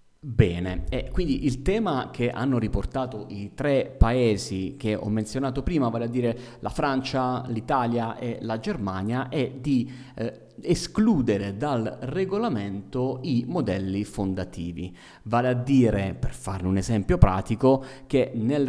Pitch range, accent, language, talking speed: 100-130 Hz, native, Italian, 135 wpm